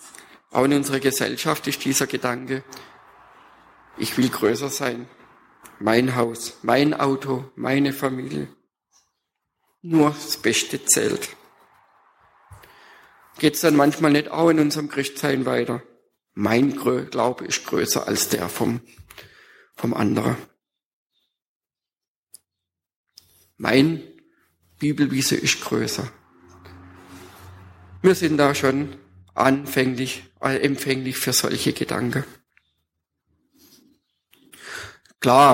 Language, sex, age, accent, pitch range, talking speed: German, male, 50-69, German, 120-145 Hz, 90 wpm